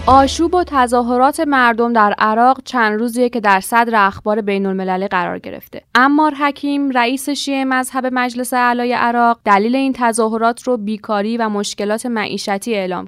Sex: female